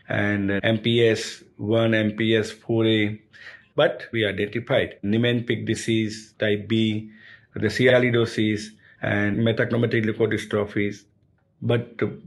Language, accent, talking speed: English, Indian, 80 wpm